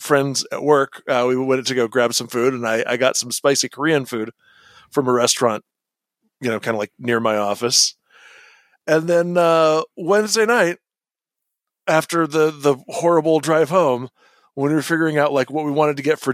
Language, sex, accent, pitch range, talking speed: English, male, American, 130-175 Hz, 195 wpm